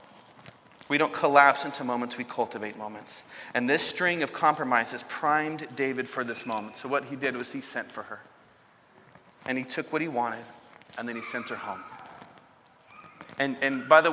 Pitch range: 130-170 Hz